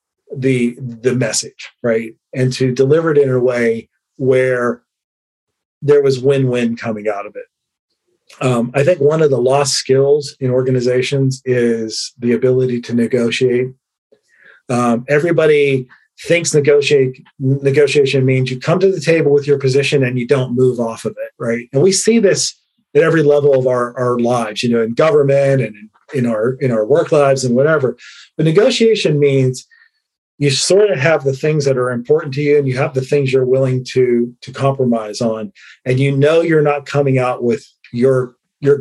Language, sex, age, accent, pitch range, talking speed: English, male, 40-59, American, 125-145 Hz, 180 wpm